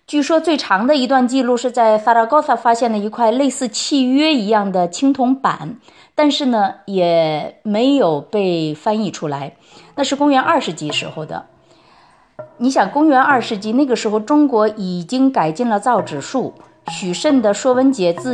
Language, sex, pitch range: Chinese, female, 185-280 Hz